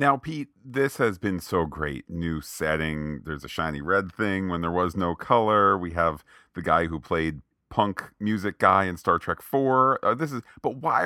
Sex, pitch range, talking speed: male, 80-105 Hz, 200 wpm